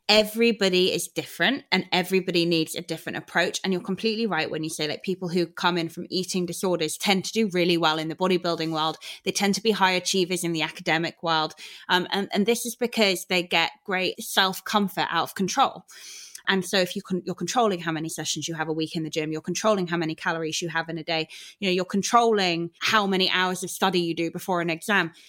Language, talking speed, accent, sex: English, 235 wpm, British, female